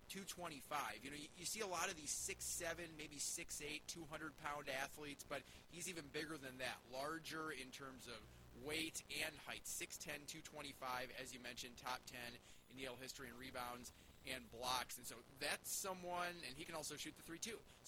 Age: 30-49